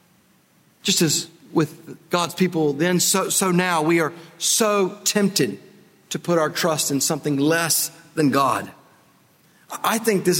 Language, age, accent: English, 50-69, American